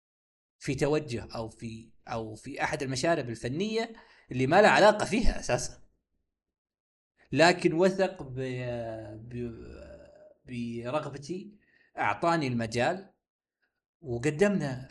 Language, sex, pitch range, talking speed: Arabic, male, 120-160 Hz, 85 wpm